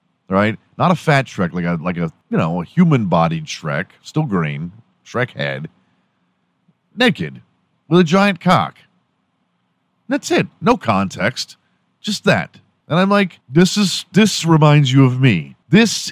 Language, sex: English, male